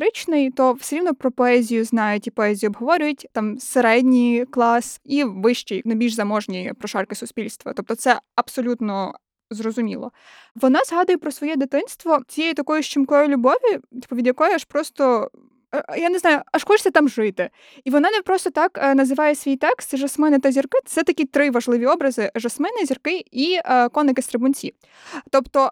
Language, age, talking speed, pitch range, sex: Ukrainian, 20-39, 155 wpm, 250-305 Hz, female